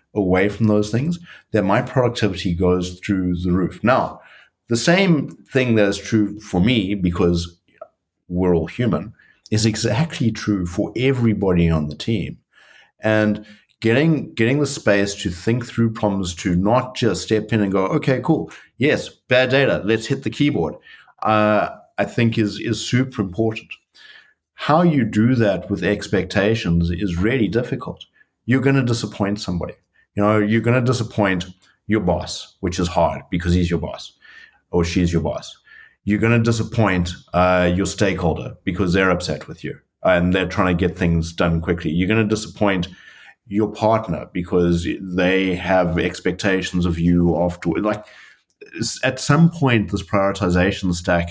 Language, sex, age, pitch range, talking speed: English, male, 50-69, 90-115 Hz, 160 wpm